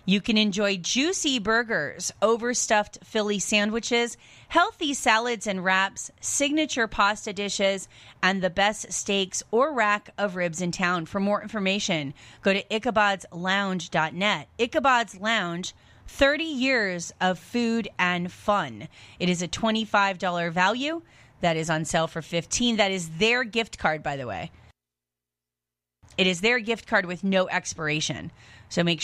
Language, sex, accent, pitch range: English, female, American, 170-220 Hz